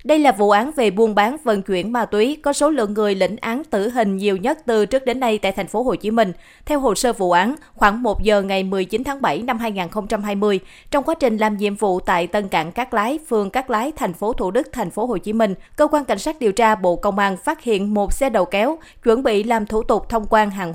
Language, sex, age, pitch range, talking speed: Vietnamese, female, 20-39, 205-250 Hz, 265 wpm